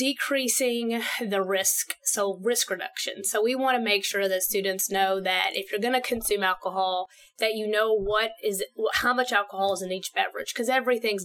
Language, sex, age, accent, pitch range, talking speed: English, female, 30-49, American, 195-230 Hz, 190 wpm